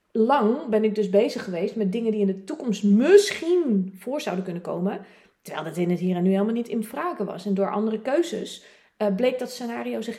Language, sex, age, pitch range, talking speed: Dutch, female, 30-49, 200-245 Hz, 225 wpm